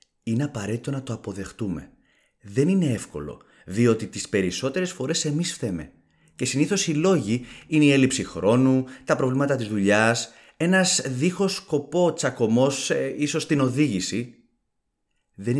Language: Greek